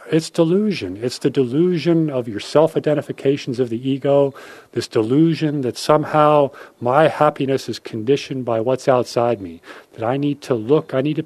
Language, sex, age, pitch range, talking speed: English, male, 40-59, 115-145 Hz, 165 wpm